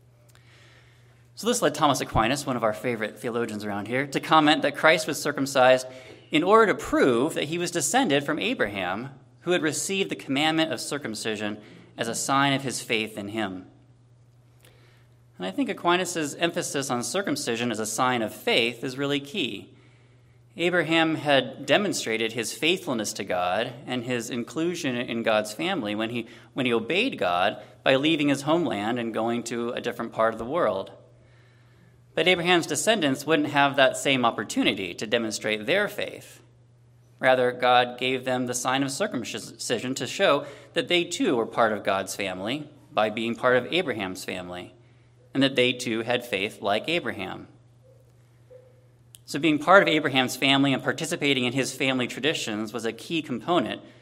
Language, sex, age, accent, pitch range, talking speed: English, male, 20-39, American, 120-140 Hz, 165 wpm